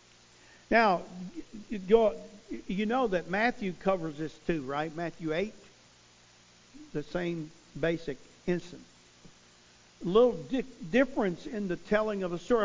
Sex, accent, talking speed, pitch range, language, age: male, American, 120 wpm, 120-190 Hz, English, 50-69